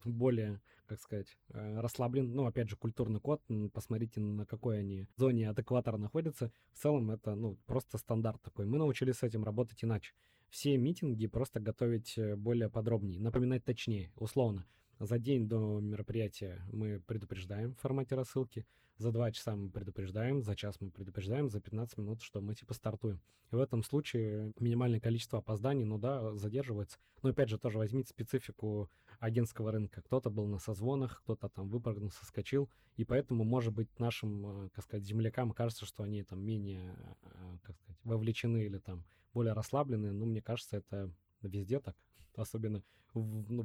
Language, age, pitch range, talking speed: Russian, 20-39, 105-120 Hz, 160 wpm